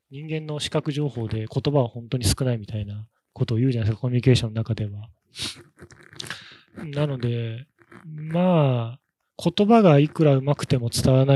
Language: Japanese